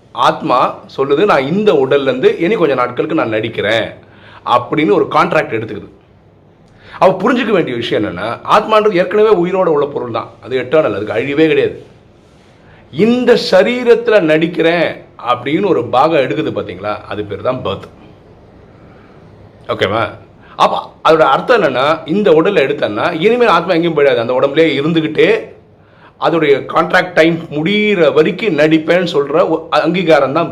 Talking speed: 55 wpm